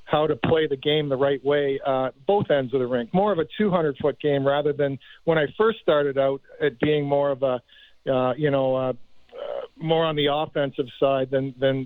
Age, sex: 50-69, male